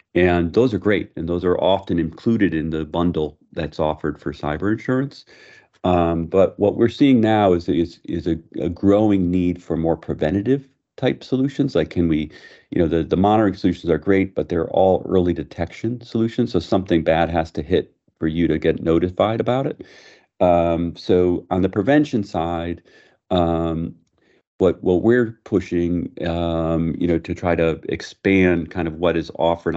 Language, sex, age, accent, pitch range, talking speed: English, male, 40-59, American, 80-95 Hz, 175 wpm